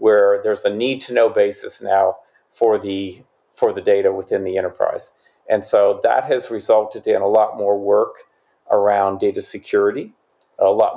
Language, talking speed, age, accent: English, 155 wpm, 50-69, American